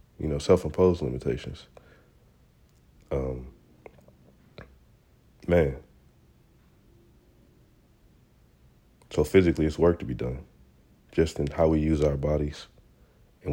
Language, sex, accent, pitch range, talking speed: English, male, American, 75-85 Hz, 95 wpm